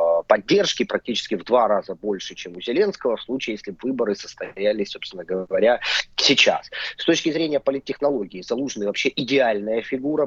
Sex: male